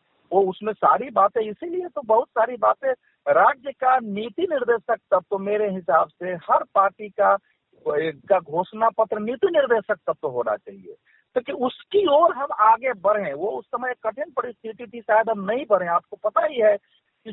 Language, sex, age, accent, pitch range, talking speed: Hindi, male, 50-69, native, 200-275 Hz, 180 wpm